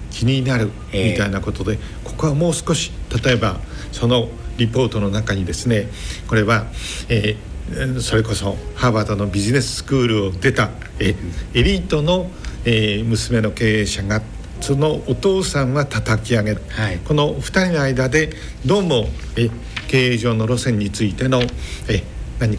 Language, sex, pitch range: Japanese, male, 105-145 Hz